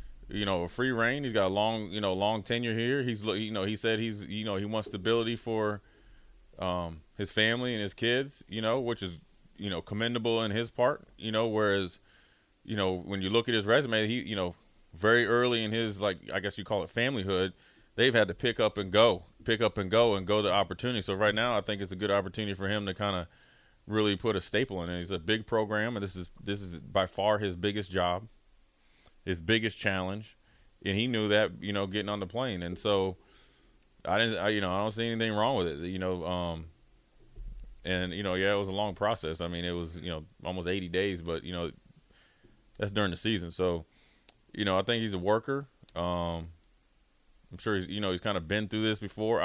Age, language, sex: 30-49, English, male